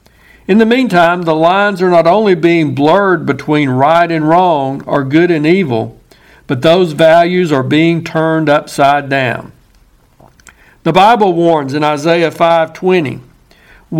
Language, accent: English, American